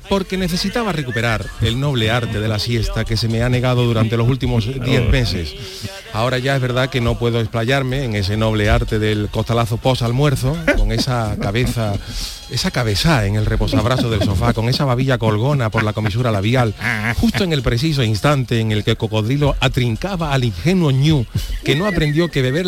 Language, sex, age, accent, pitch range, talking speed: Spanish, male, 40-59, Spanish, 110-135 Hz, 190 wpm